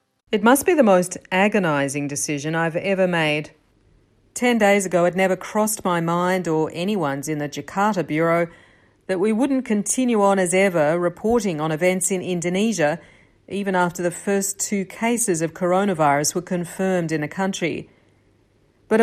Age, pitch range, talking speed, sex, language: 40-59, 160-205 Hz, 160 wpm, female, English